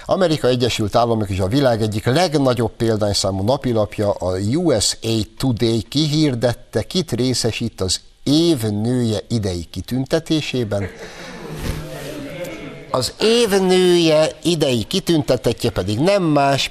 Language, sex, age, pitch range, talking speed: Hungarian, male, 60-79, 110-160 Hz, 95 wpm